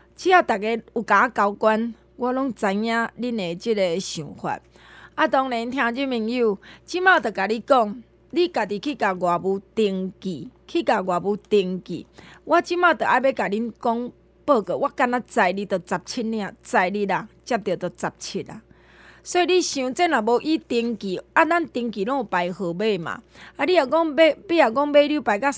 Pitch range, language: 200-280 Hz, Chinese